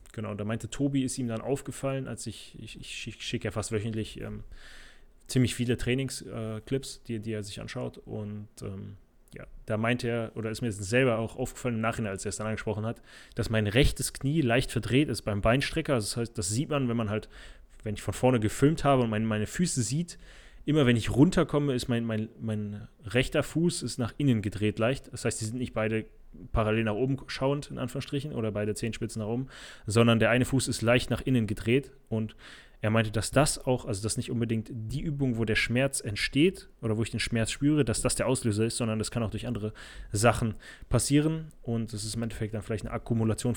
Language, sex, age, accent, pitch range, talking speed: German, male, 20-39, German, 110-130 Hz, 225 wpm